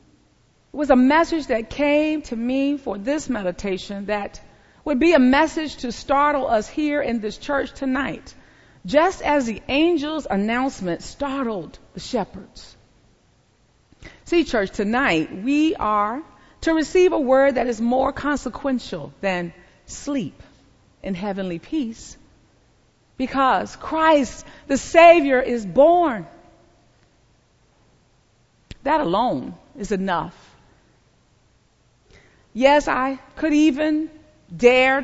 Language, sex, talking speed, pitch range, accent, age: English, female, 110 wpm, 220-295 Hz, American, 40-59